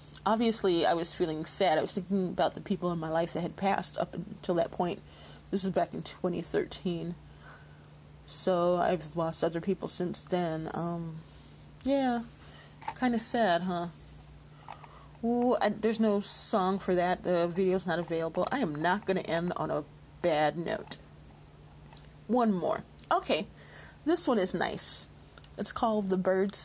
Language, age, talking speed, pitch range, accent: English, 30-49, 160 wpm, 170-205 Hz, American